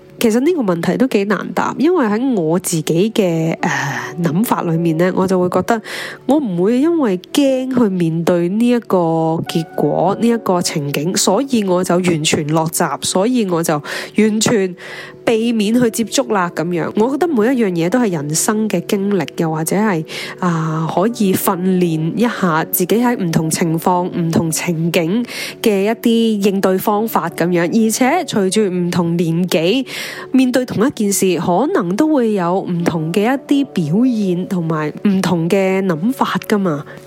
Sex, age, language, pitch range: female, 20-39, Chinese, 170-215 Hz